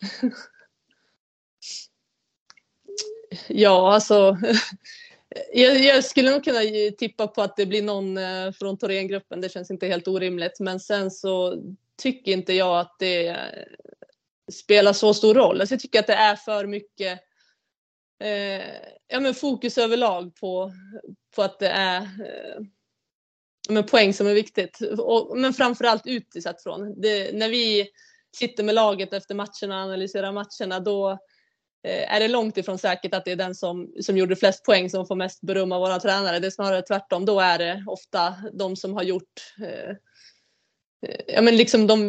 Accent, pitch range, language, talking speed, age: native, 190-225 Hz, Swedish, 155 wpm, 20-39